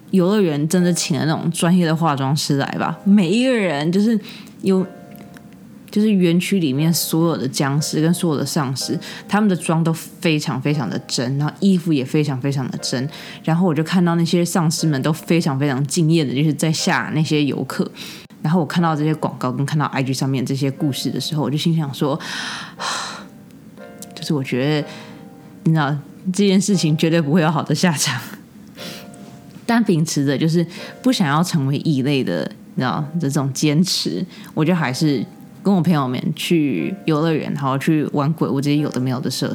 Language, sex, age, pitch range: Chinese, female, 20-39, 150-195 Hz